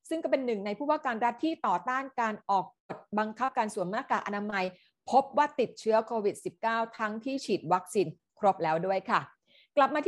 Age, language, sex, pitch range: 30-49, Thai, female, 200-265 Hz